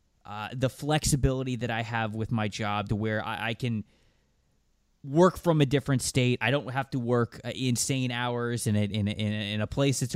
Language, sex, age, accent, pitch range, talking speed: English, male, 20-39, American, 110-135 Hz, 200 wpm